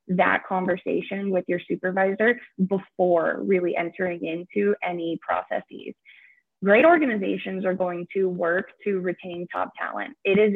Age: 20-39